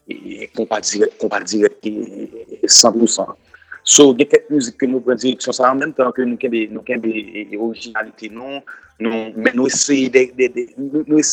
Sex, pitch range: male, 120-150 Hz